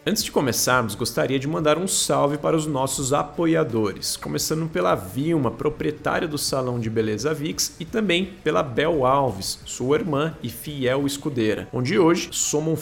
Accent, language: Brazilian, Portuguese